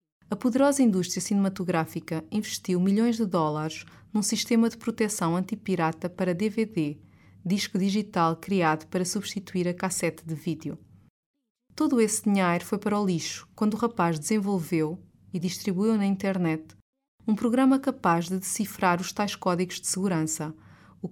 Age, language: 20-39, Chinese